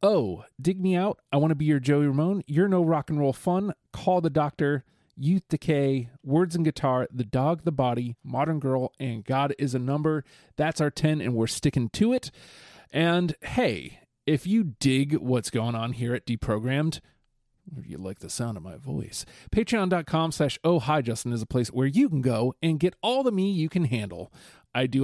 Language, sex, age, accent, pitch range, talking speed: English, male, 30-49, American, 125-165 Hz, 205 wpm